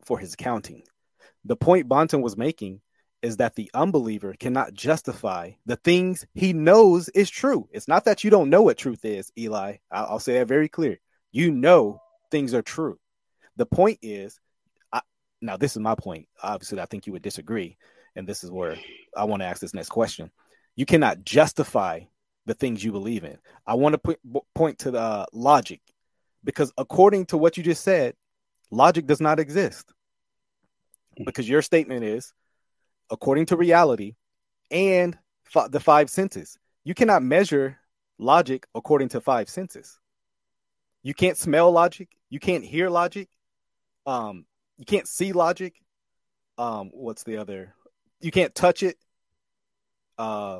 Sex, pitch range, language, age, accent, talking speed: male, 115-180 Hz, English, 30-49, American, 160 wpm